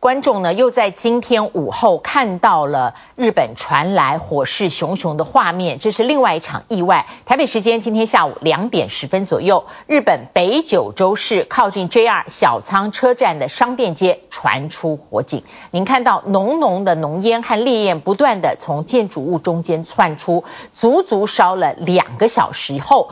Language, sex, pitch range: Chinese, female, 170-245 Hz